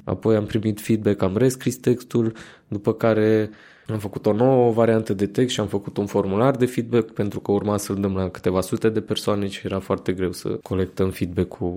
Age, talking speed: 20-39, 205 wpm